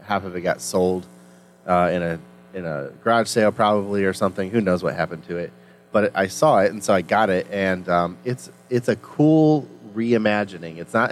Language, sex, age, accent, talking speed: English, male, 30-49, American, 210 wpm